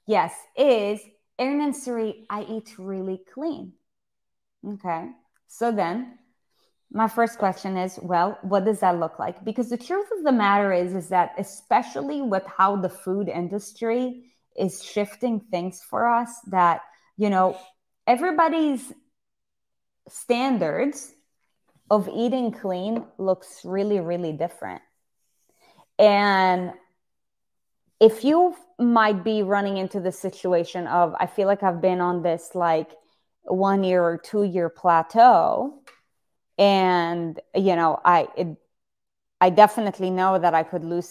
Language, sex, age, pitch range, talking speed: English, female, 20-39, 180-225 Hz, 130 wpm